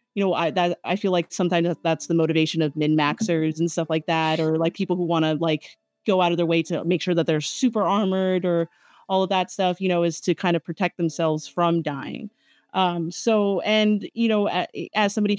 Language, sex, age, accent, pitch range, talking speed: English, female, 30-49, American, 160-190 Hz, 230 wpm